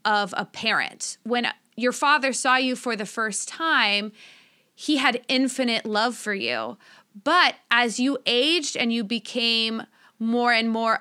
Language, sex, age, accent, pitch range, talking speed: English, female, 30-49, American, 220-260 Hz, 155 wpm